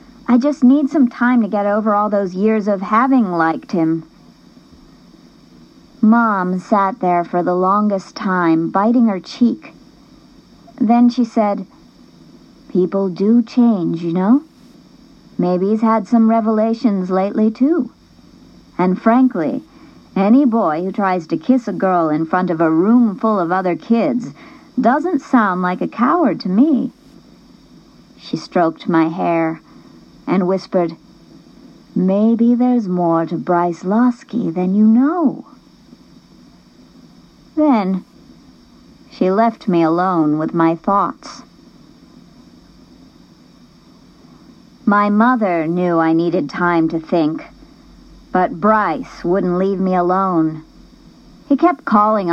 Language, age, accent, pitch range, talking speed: English, 50-69, American, 180-240 Hz, 120 wpm